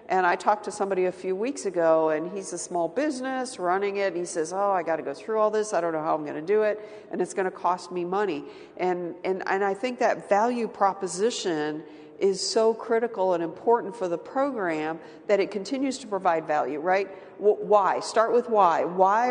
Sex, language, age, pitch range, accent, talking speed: female, English, 50-69, 170-210 Hz, American, 210 wpm